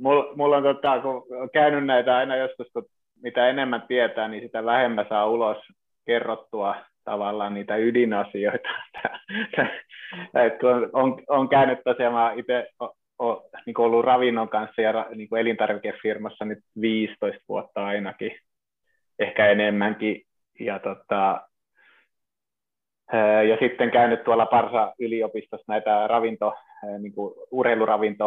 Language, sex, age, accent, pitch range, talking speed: Finnish, male, 20-39, native, 105-130 Hz, 105 wpm